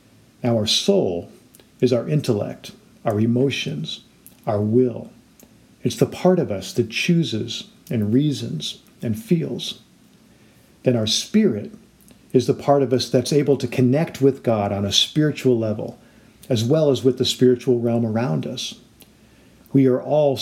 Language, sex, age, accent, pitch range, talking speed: English, male, 50-69, American, 115-160 Hz, 150 wpm